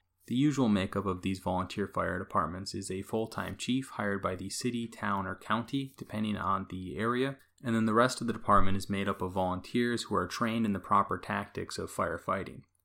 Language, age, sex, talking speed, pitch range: English, 20-39, male, 205 wpm, 95-115 Hz